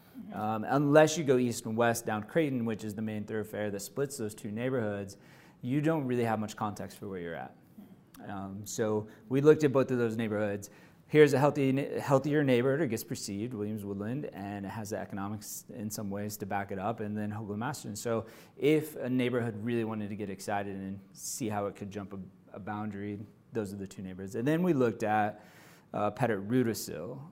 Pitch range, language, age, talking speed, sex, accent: 100-125 Hz, English, 30-49, 205 wpm, male, American